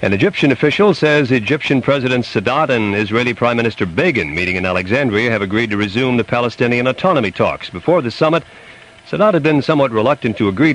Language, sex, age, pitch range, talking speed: English, male, 50-69, 105-140 Hz, 185 wpm